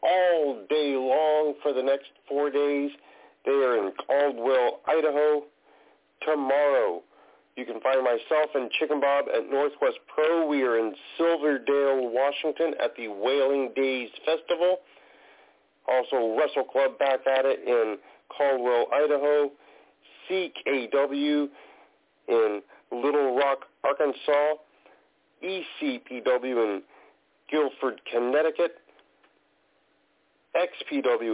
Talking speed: 100 wpm